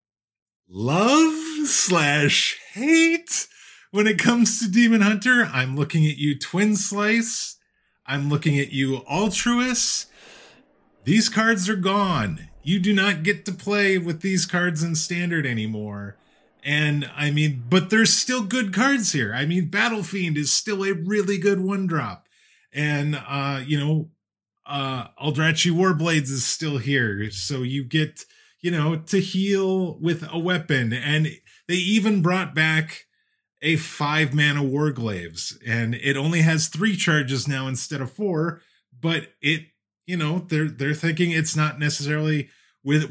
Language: English